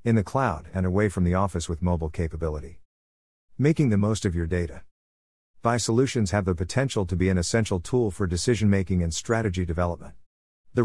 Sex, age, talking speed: male, 50-69, 185 wpm